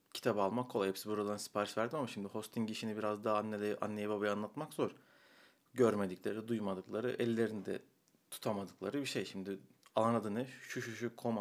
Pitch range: 100-125 Hz